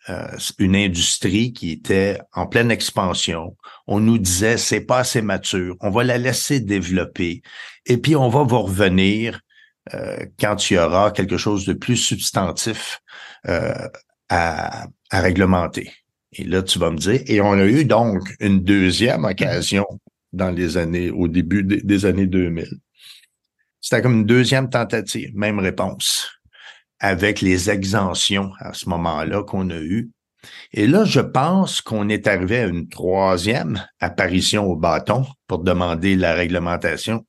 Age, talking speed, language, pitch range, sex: 60-79, 155 wpm, French, 95-120 Hz, male